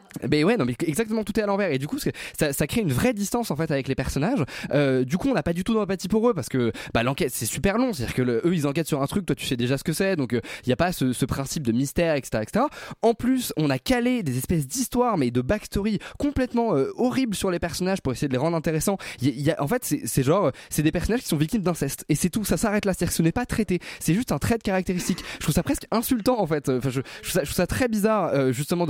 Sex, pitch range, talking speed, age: male, 140-210 Hz, 300 wpm, 20-39